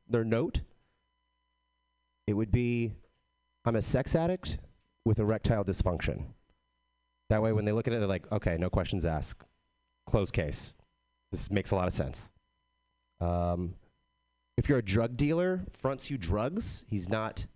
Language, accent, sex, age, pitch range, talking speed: English, American, male, 30-49, 75-110 Hz, 150 wpm